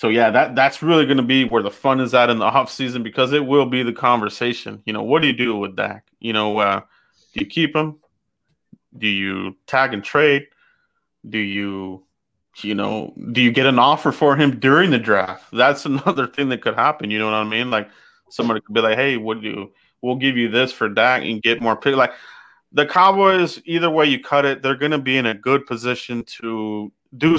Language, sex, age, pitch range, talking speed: English, male, 30-49, 110-135 Hz, 230 wpm